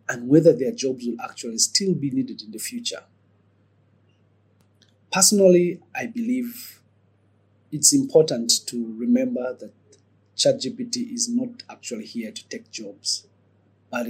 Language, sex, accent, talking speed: English, male, South African, 125 wpm